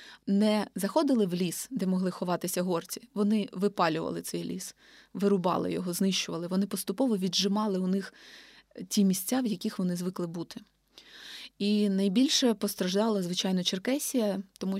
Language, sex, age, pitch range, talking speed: Ukrainian, female, 20-39, 185-220 Hz, 135 wpm